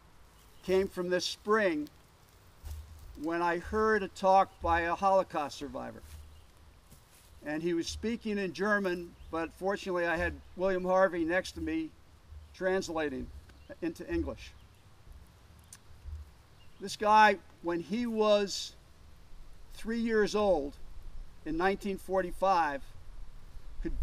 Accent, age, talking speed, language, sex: American, 50-69, 105 wpm, English, male